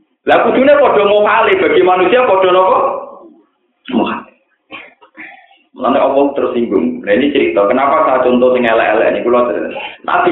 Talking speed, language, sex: 165 wpm, Indonesian, male